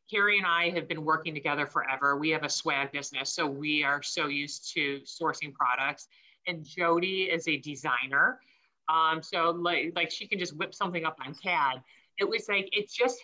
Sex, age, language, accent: female, 30-49, English, American